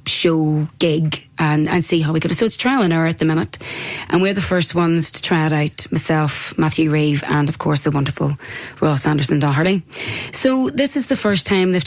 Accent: Irish